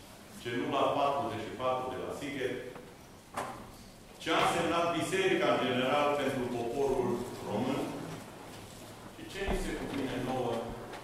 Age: 40-59